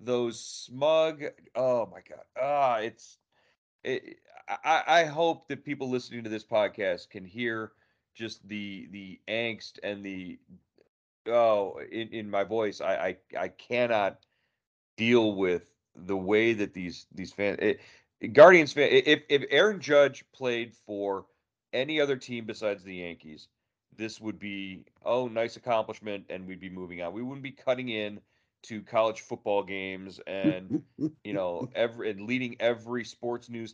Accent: American